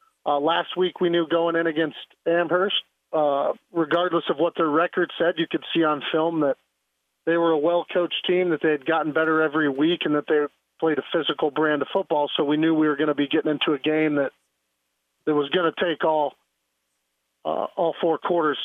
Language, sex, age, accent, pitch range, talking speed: English, male, 40-59, American, 145-170 Hz, 210 wpm